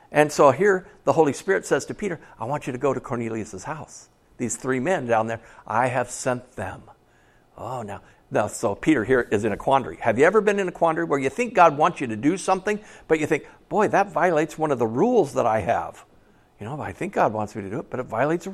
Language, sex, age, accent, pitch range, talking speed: English, male, 60-79, American, 145-200 Hz, 255 wpm